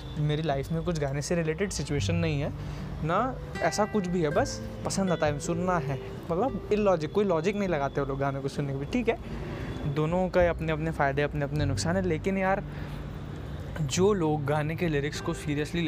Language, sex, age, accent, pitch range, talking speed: Hindi, male, 20-39, native, 135-165 Hz, 205 wpm